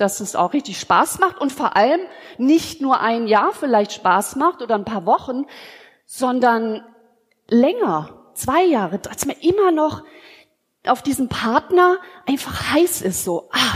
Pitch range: 210-290 Hz